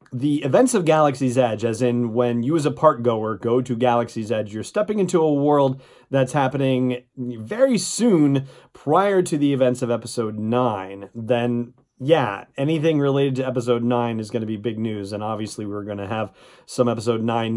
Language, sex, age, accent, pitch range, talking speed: English, male, 30-49, American, 115-140 Hz, 190 wpm